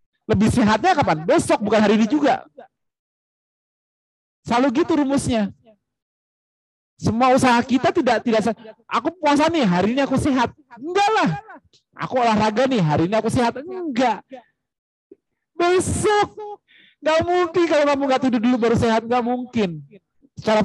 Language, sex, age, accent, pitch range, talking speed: Indonesian, male, 40-59, native, 165-250 Hz, 135 wpm